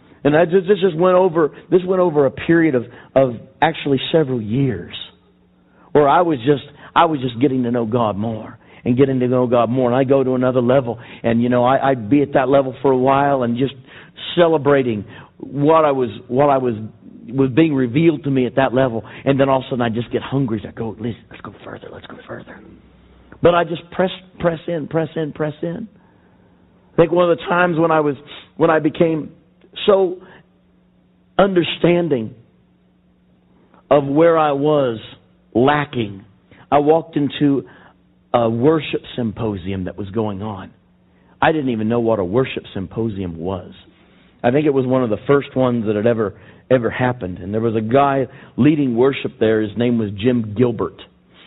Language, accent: English, American